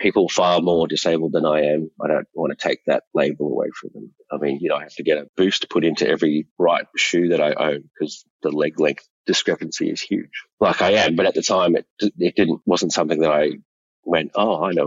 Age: 30-49